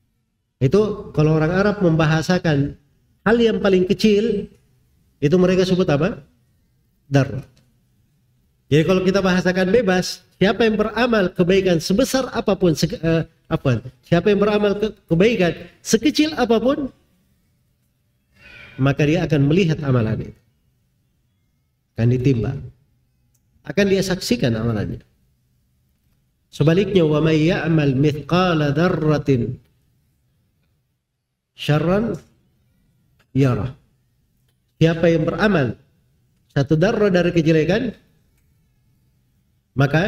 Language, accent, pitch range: Indonesian, native, 130-190 Hz